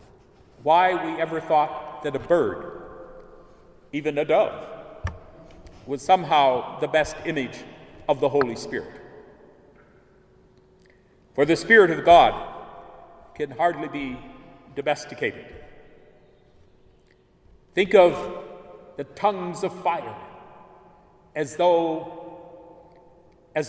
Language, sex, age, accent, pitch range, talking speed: English, male, 50-69, American, 155-190 Hz, 95 wpm